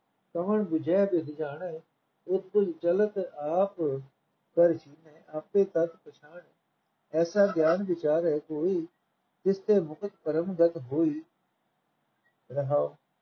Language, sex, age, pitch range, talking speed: Punjabi, male, 50-69, 155-185 Hz, 100 wpm